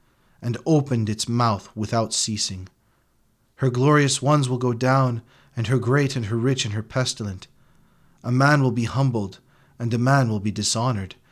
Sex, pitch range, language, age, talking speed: male, 120-175 Hz, English, 40-59, 170 wpm